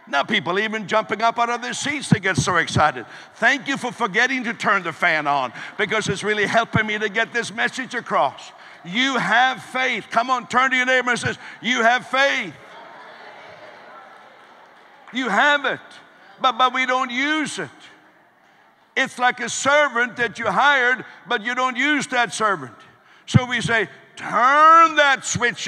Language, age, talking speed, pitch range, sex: English, 60-79, 175 wpm, 160-240 Hz, male